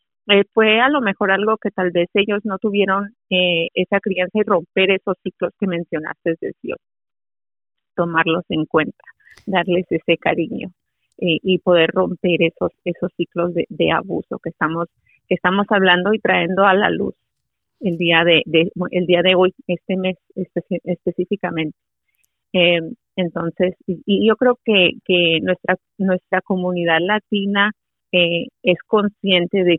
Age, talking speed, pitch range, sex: 30-49, 155 wpm, 180-205 Hz, female